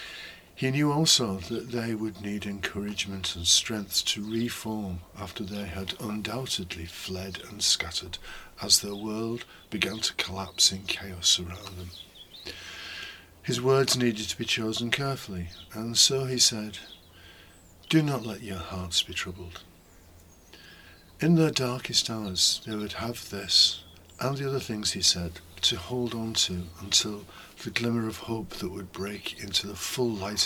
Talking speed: 150 wpm